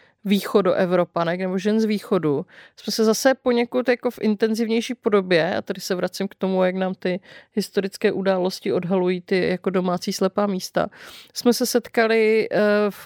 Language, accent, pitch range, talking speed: Czech, native, 185-230 Hz, 155 wpm